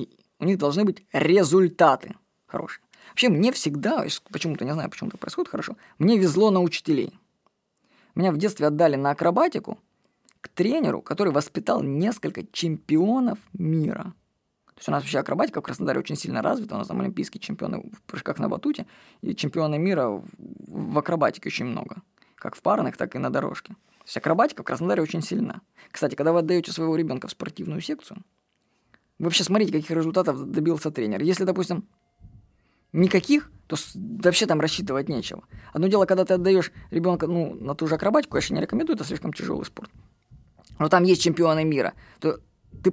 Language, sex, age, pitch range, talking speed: Russian, female, 20-39, 165-210 Hz, 170 wpm